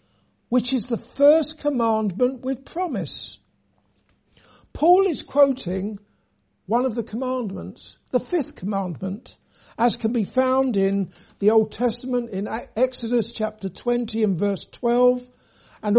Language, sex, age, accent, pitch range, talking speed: English, male, 60-79, British, 205-245 Hz, 125 wpm